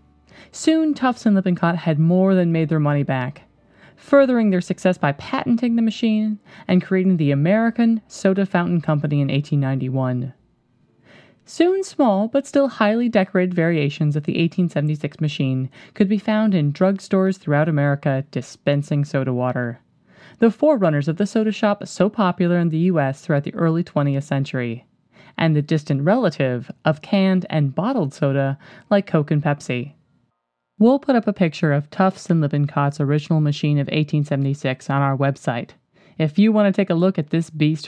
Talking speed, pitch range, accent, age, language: 165 wpm, 145-205 Hz, American, 20-39, English